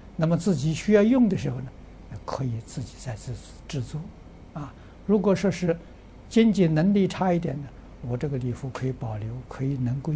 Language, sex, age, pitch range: Chinese, male, 60-79, 100-140 Hz